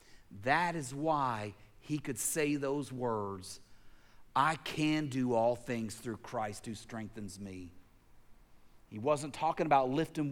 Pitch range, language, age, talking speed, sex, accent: 115-150 Hz, English, 40-59, 135 wpm, male, American